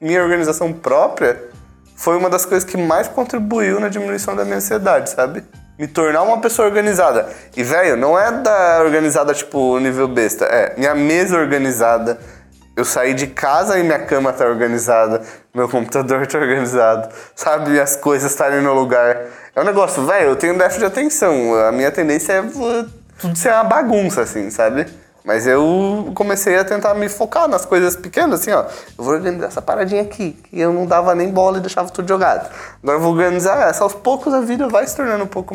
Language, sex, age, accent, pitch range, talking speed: Portuguese, male, 20-39, Brazilian, 145-215 Hz, 190 wpm